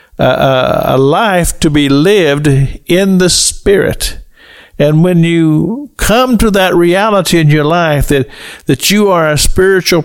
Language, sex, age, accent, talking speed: English, male, 50-69, American, 150 wpm